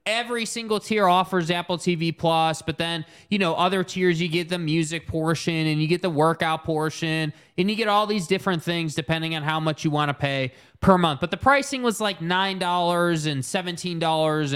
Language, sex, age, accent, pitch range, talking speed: English, male, 20-39, American, 155-185 Hz, 200 wpm